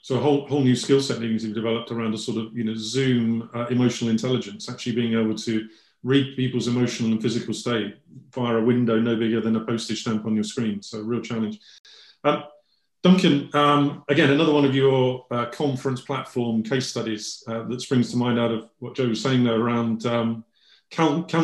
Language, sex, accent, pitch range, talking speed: English, male, British, 120-140 Hz, 210 wpm